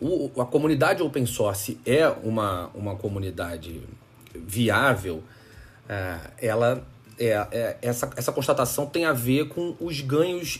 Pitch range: 115-140 Hz